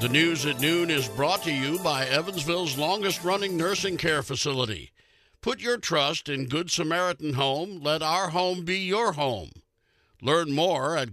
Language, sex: English, male